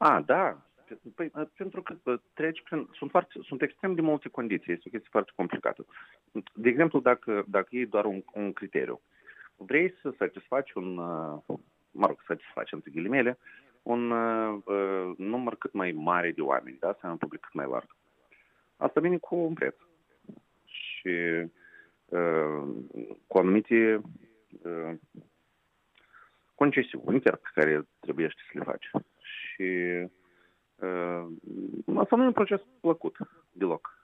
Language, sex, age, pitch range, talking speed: Romanian, male, 40-59, 90-145 Hz, 140 wpm